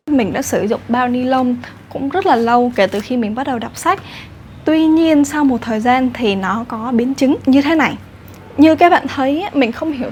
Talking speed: 235 wpm